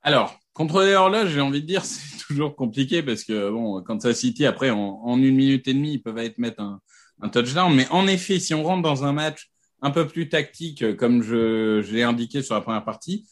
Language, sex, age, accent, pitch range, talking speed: French, male, 30-49, French, 115-160 Hz, 240 wpm